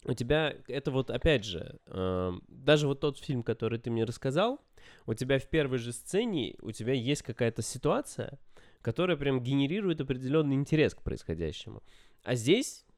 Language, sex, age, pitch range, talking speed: Russian, male, 20-39, 125-175 Hz, 155 wpm